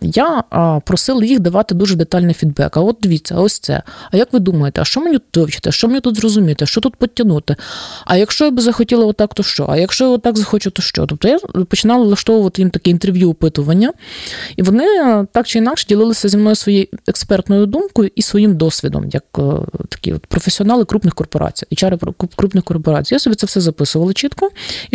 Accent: native